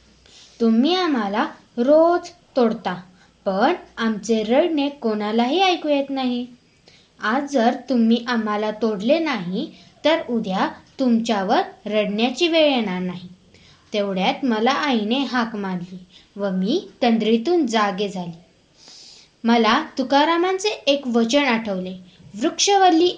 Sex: female